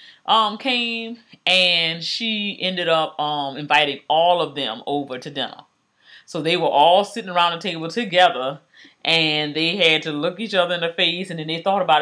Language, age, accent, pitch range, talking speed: English, 30-49, American, 145-180 Hz, 190 wpm